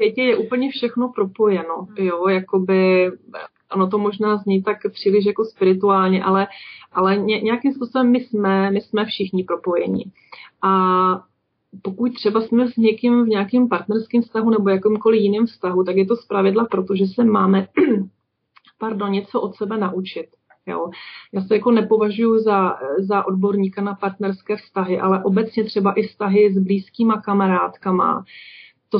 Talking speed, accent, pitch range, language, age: 150 wpm, native, 195-230 Hz, Czech, 30-49